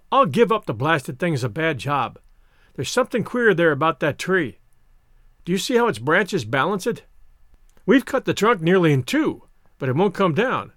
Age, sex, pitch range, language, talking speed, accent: 50-69, male, 155-205 Hz, English, 205 wpm, American